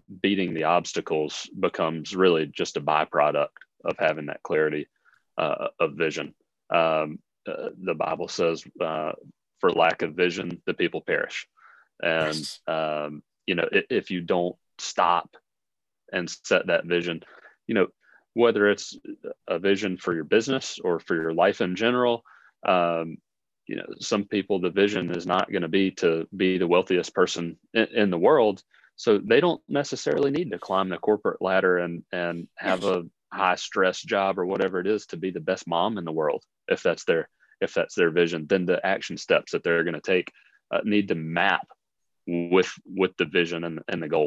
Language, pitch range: English, 85-115 Hz